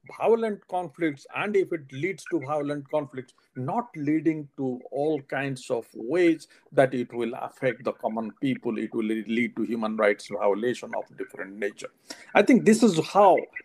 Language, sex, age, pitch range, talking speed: Amharic, male, 50-69, 120-185 Hz, 165 wpm